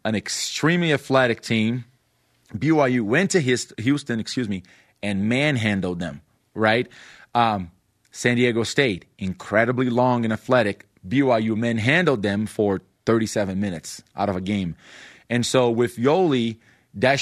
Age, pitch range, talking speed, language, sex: 30-49, 105-130 Hz, 130 wpm, English, male